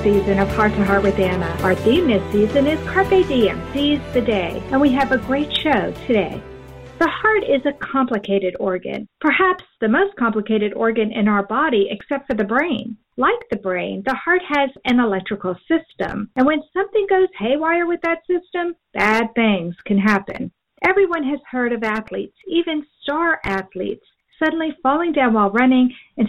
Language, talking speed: English, 175 wpm